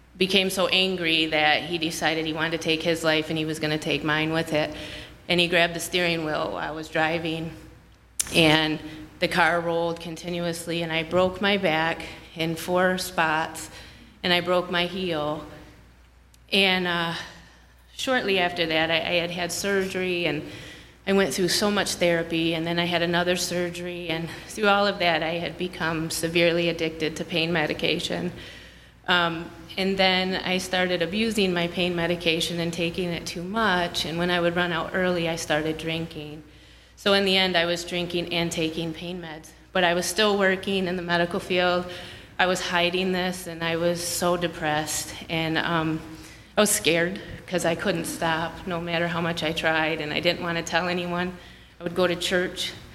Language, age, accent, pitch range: English, 30-49, American, 160-180 Hz